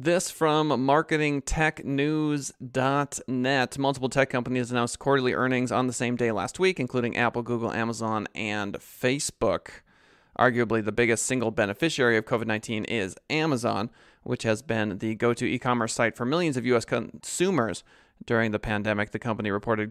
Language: English